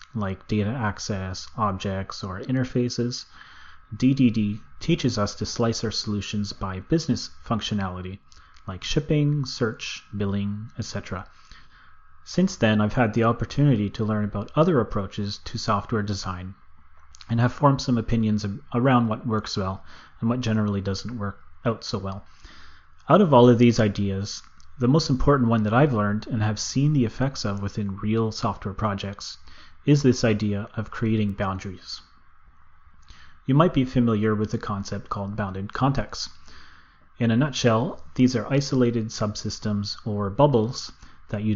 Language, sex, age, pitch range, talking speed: English, male, 30-49, 95-120 Hz, 145 wpm